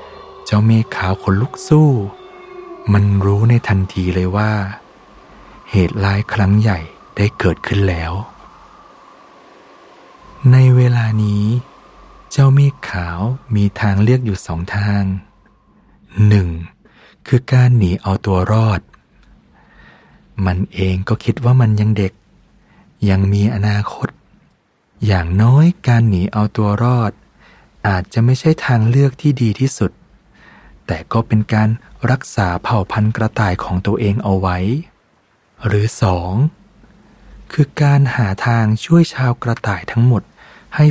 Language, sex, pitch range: Thai, male, 100-125 Hz